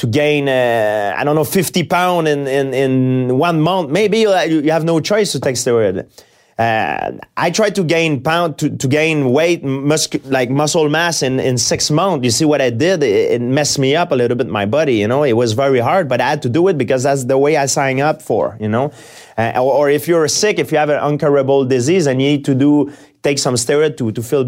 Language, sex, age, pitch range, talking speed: English, male, 30-49, 120-150 Hz, 245 wpm